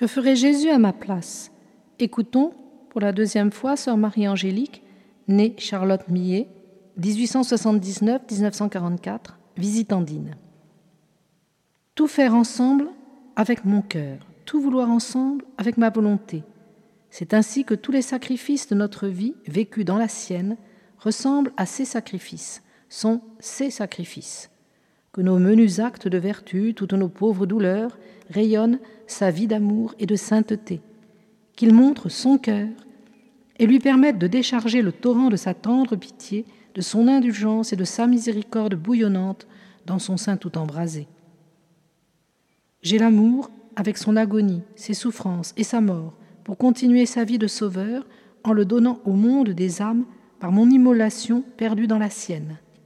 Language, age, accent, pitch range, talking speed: French, 50-69, French, 195-240 Hz, 145 wpm